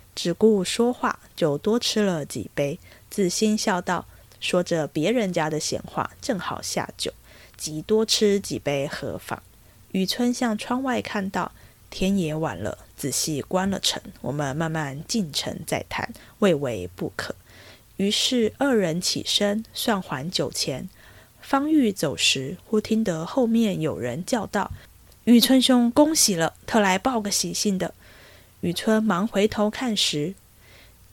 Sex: female